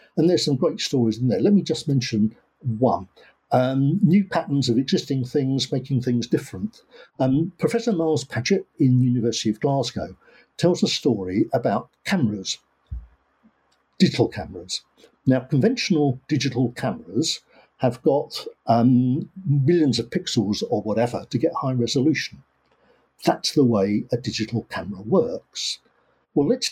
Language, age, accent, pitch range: English, 50-69, British, 120-170 Hz